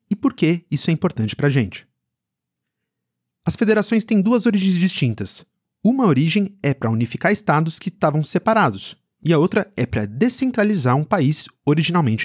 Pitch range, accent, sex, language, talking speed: 125-190 Hz, Brazilian, male, Portuguese, 160 wpm